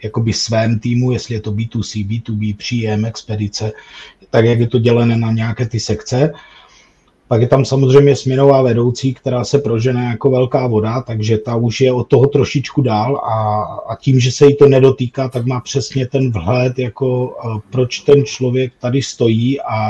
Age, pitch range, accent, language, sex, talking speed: 30-49, 115-130 Hz, native, Czech, male, 180 wpm